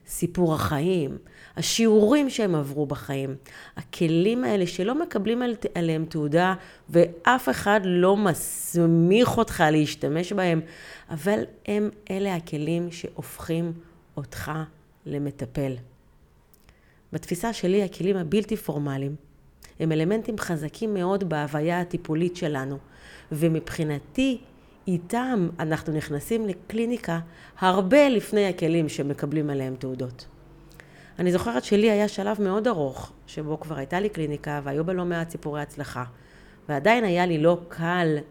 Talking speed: 115 wpm